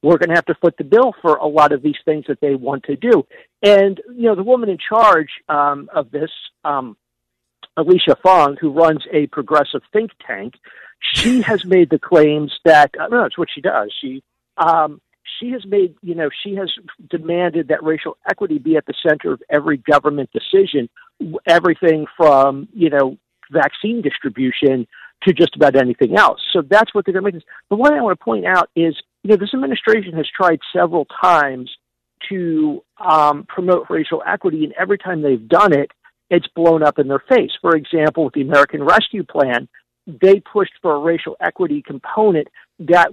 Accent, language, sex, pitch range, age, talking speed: American, English, male, 145-195 Hz, 50-69, 190 wpm